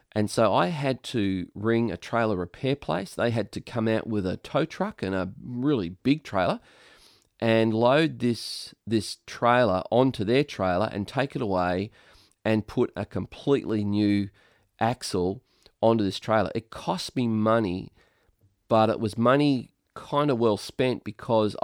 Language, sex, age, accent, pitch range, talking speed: English, male, 30-49, Australian, 100-125 Hz, 160 wpm